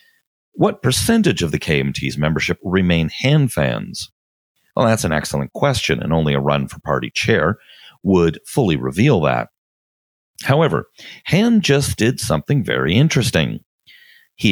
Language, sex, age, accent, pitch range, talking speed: English, male, 40-59, American, 80-125 Hz, 135 wpm